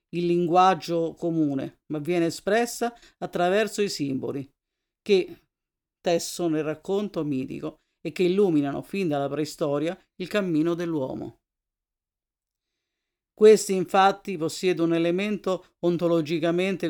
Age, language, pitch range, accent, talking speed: 50-69, Italian, 155-185 Hz, native, 105 wpm